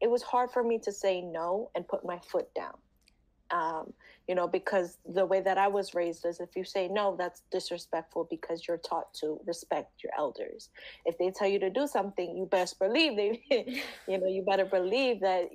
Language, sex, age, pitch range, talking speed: English, female, 20-39, 170-195 Hz, 210 wpm